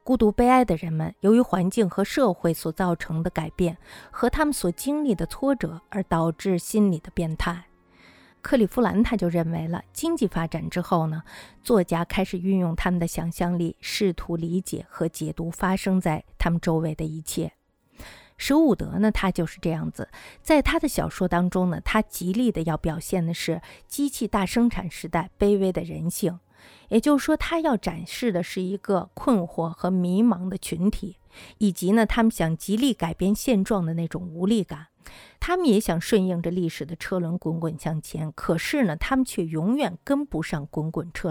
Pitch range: 165-220 Hz